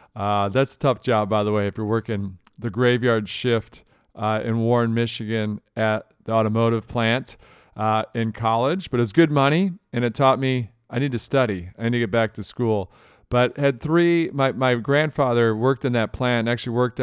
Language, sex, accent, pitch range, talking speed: English, male, American, 115-130 Hz, 200 wpm